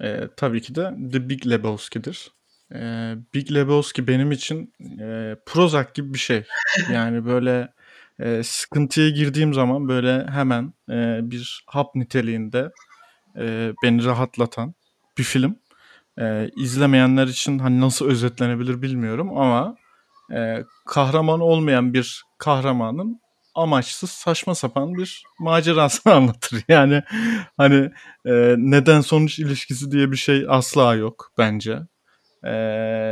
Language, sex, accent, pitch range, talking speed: Turkish, male, native, 120-150 Hz, 120 wpm